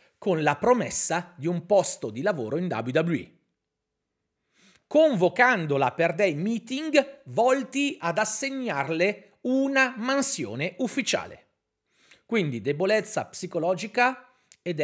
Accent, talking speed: native, 95 wpm